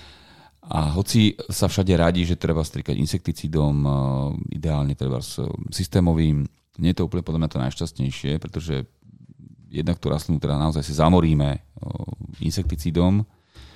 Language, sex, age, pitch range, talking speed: Slovak, male, 30-49, 75-90 Hz, 130 wpm